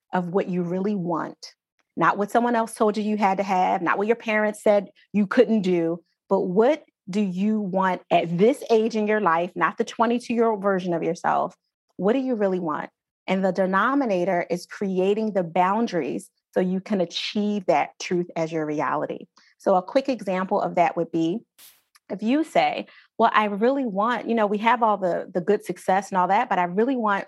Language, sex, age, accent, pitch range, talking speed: English, female, 30-49, American, 180-220 Hz, 200 wpm